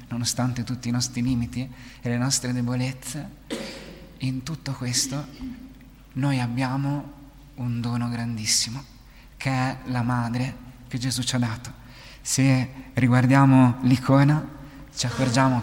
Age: 30-49